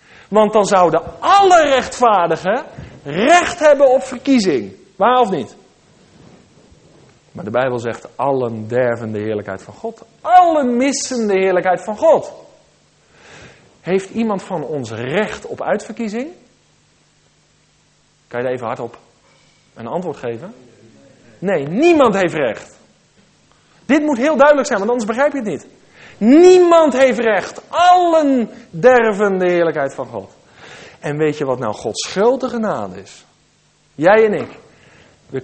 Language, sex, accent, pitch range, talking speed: English, male, Dutch, 160-265 Hz, 135 wpm